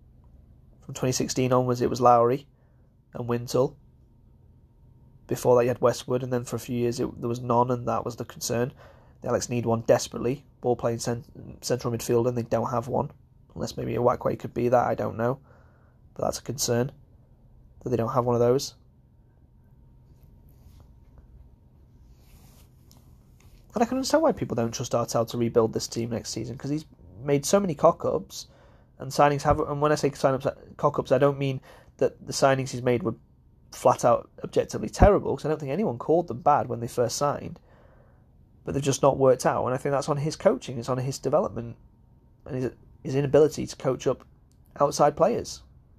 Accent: British